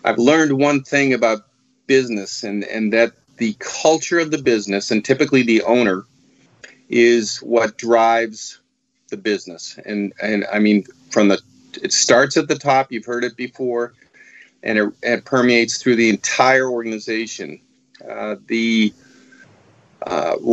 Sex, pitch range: male, 110-130 Hz